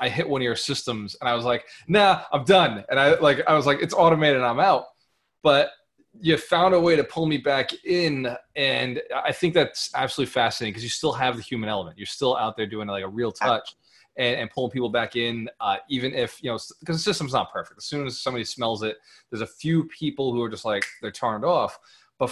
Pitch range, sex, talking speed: 115-145 Hz, male, 240 wpm